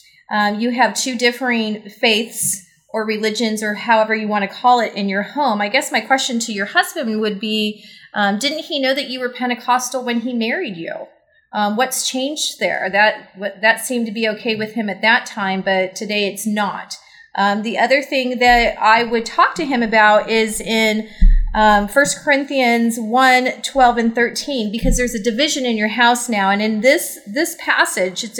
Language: English